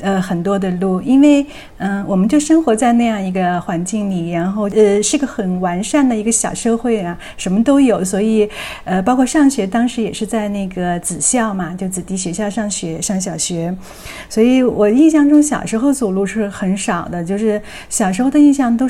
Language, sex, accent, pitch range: Chinese, female, native, 190-230 Hz